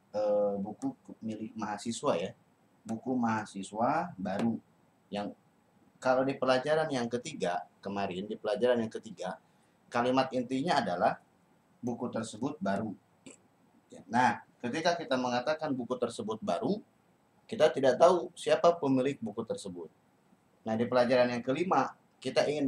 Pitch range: 115-140 Hz